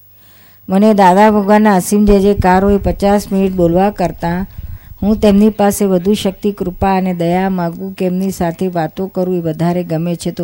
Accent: native